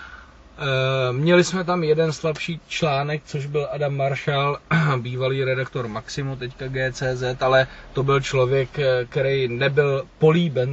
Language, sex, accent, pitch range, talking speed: Czech, male, native, 125-145 Hz, 125 wpm